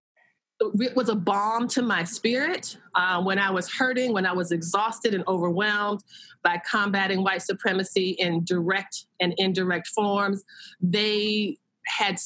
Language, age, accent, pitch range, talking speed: English, 30-49, American, 180-220 Hz, 140 wpm